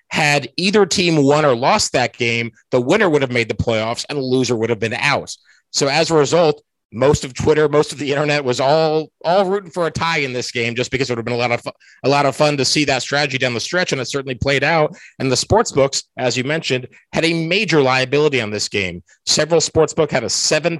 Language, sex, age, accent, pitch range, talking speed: English, male, 30-49, American, 120-155 Hz, 255 wpm